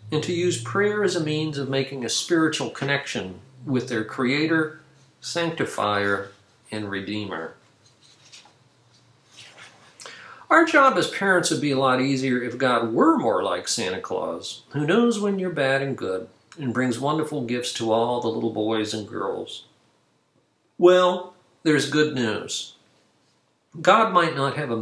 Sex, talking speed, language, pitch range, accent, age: male, 145 wpm, English, 120-170 Hz, American, 50-69